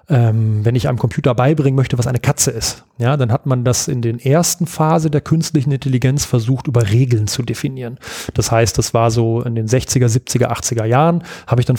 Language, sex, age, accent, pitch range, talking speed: German, male, 30-49, German, 120-150 Hz, 215 wpm